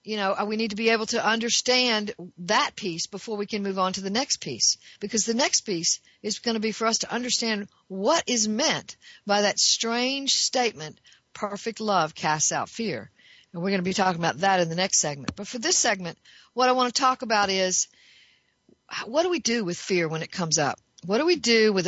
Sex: female